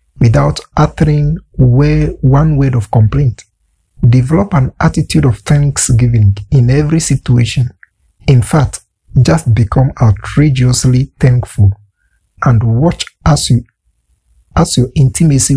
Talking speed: 100 wpm